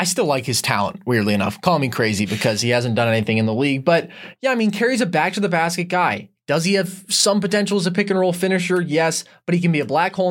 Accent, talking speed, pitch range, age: American, 260 wpm, 145-195 Hz, 20-39